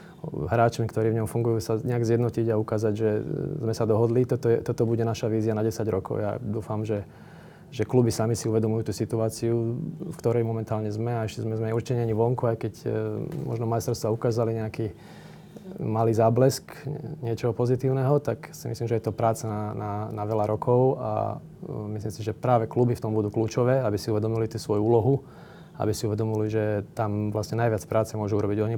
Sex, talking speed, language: male, 190 wpm, Slovak